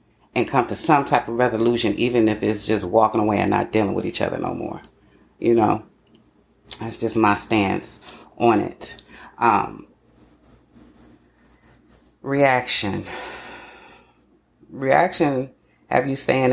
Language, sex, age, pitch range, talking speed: English, female, 30-49, 110-135 Hz, 125 wpm